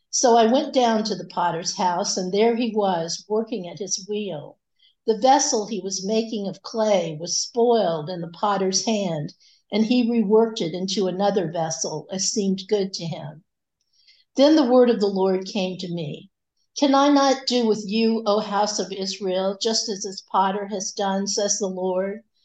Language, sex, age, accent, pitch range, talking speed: English, female, 60-79, American, 185-225 Hz, 185 wpm